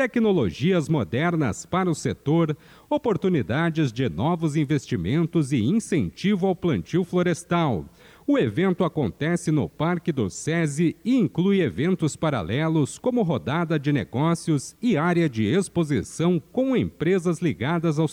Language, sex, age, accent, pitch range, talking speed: Portuguese, male, 50-69, Brazilian, 150-180 Hz, 120 wpm